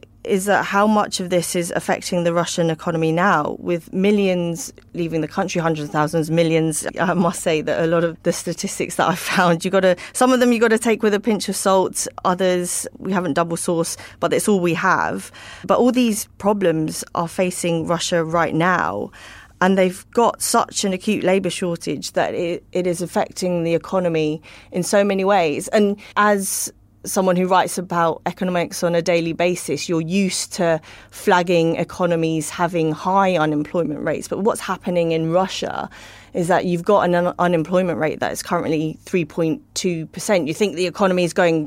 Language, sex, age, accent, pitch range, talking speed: English, female, 30-49, British, 165-195 Hz, 185 wpm